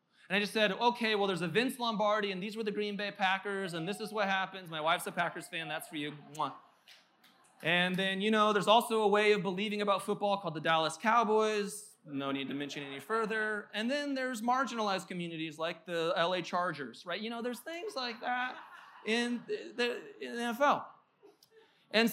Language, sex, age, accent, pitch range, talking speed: English, male, 20-39, American, 195-240 Hz, 200 wpm